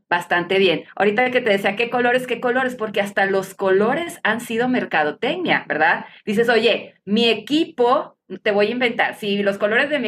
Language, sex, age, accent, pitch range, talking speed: Spanish, female, 30-49, Mexican, 200-245 Hz, 185 wpm